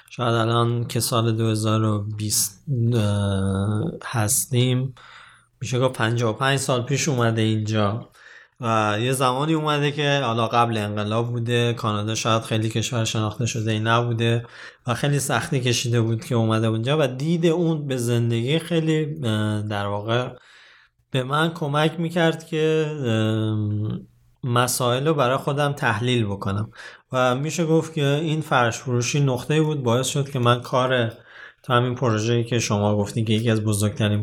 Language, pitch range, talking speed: Persian, 110-130 Hz, 145 wpm